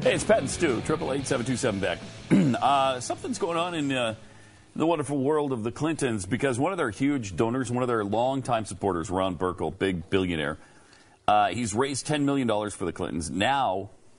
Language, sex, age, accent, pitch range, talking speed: English, male, 40-59, American, 100-135 Hz, 195 wpm